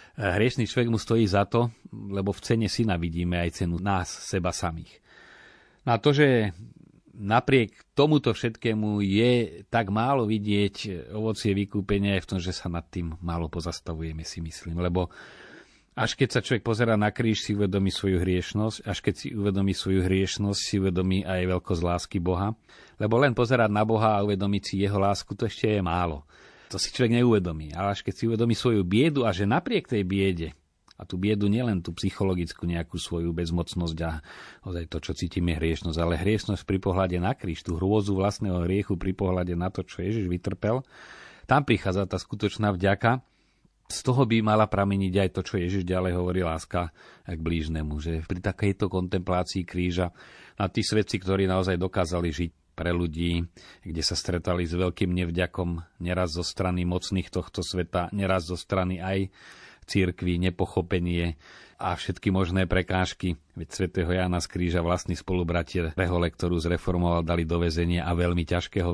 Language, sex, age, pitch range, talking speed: Slovak, male, 40-59, 90-105 Hz, 170 wpm